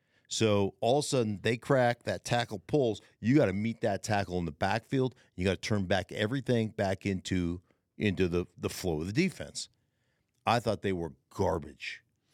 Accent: American